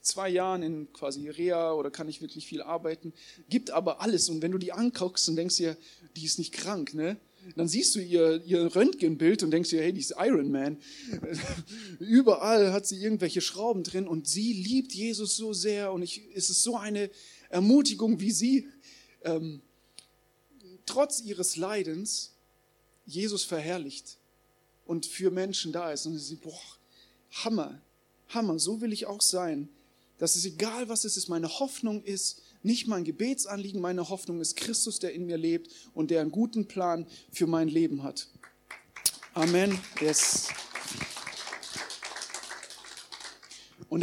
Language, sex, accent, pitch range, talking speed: German, male, German, 160-205 Hz, 160 wpm